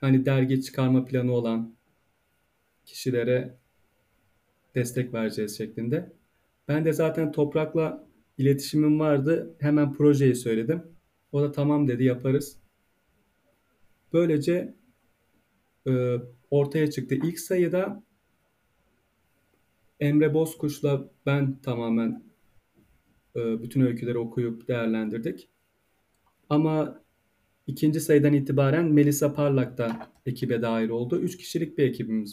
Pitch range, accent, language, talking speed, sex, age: 115-150 Hz, native, Turkish, 95 wpm, male, 40-59